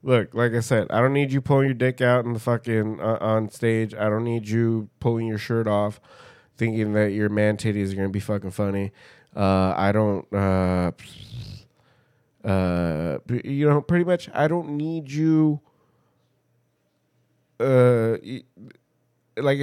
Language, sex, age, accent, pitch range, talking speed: English, male, 20-39, American, 100-140 Hz, 160 wpm